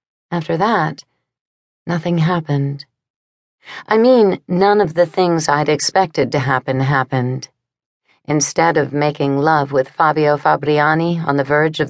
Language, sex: English, female